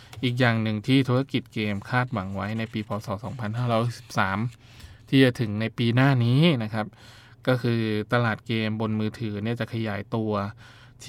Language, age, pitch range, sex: Thai, 20-39, 110-125 Hz, male